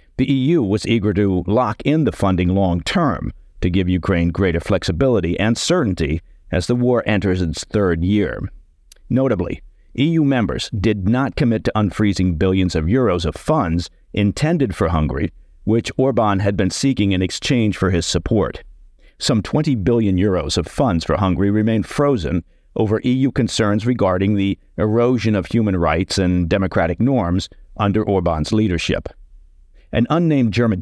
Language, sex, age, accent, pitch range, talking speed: English, male, 50-69, American, 90-115 Hz, 155 wpm